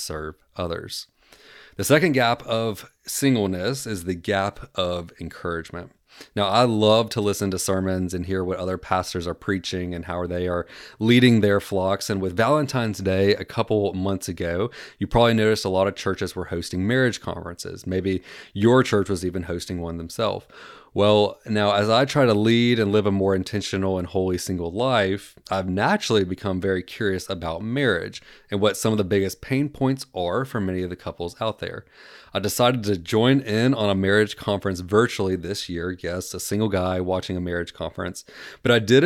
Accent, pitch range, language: American, 90-115 Hz, English